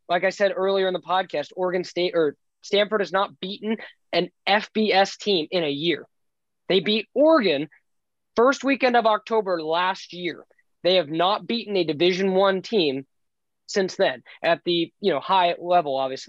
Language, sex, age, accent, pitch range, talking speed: English, male, 20-39, American, 165-195 Hz, 170 wpm